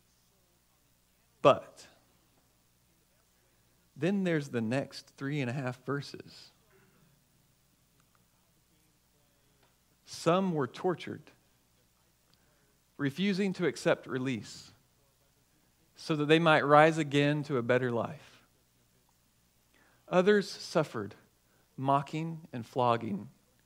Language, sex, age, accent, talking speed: English, male, 40-59, American, 80 wpm